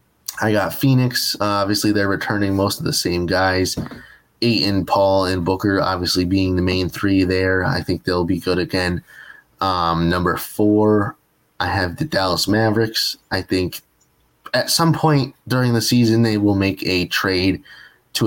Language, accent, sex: English, American, male